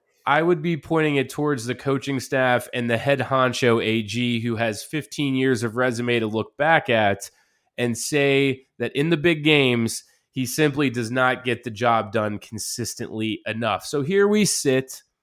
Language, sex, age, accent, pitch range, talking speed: English, male, 20-39, American, 120-145 Hz, 175 wpm